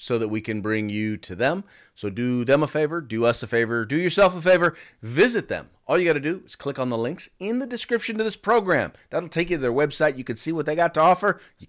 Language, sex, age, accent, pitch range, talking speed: English, male, 40-59, American, 115-170 Hz, 275 wpm